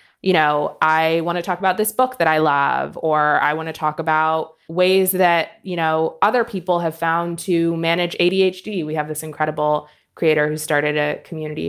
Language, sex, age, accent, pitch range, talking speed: English, female, 20-39, American, 155-190 Hz, 195 wpm